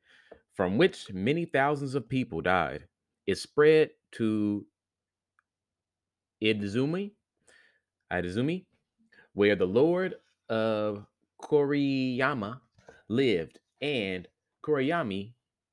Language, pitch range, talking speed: English, 95-130 Hz, 75 wpm